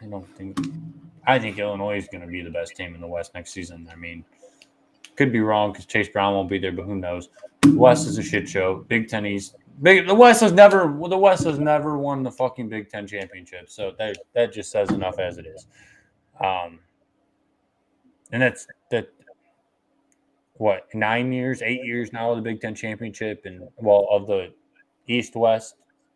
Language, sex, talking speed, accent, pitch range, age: English, male, 195 wpm, American, 95-125 Hz, 20-39